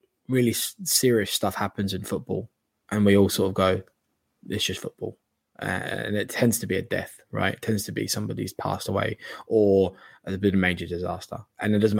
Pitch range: 90-110 Hz